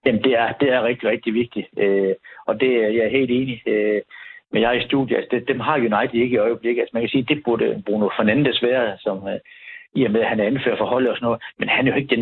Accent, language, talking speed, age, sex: native, Danish, 285 wpm, 60-79, male